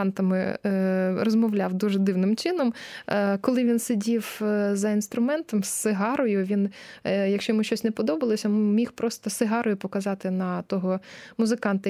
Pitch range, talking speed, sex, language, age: 205-255 Hz, 125 wpm, female, Ukrainian, 20-39